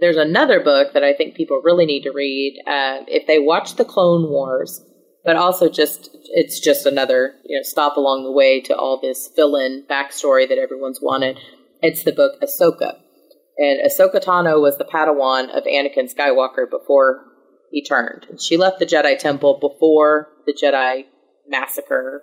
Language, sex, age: English, female, 30-49